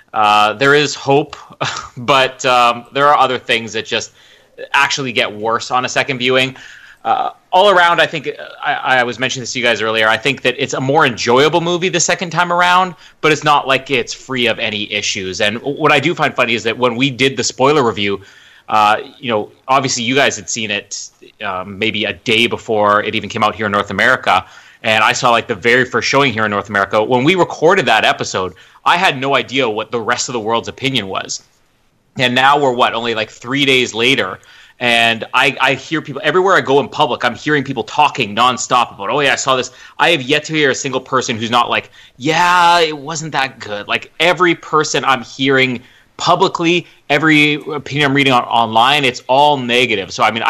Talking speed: 215 wpm